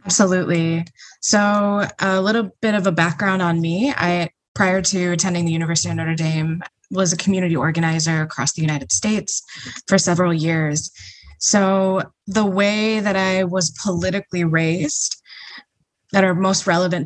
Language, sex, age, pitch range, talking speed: English, female, 20-39, 160-190 Hz, 150 wpm